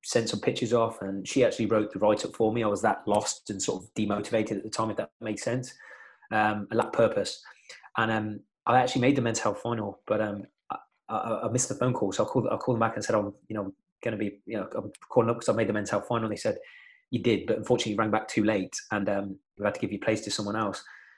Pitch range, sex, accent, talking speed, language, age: 105-125 Hz, male, British, 285 wpm, English, 20-39